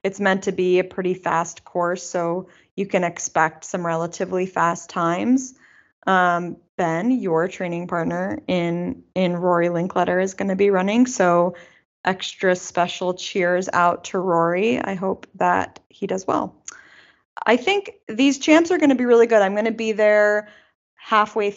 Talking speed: 165 wpm